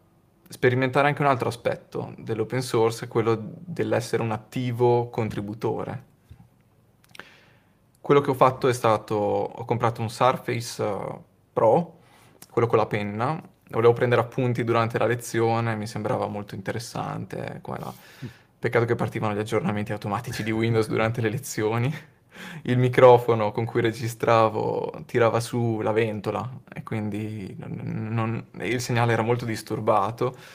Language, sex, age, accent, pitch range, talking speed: Italian, male, 20-39, native, 110-125 Hz, 125 wpm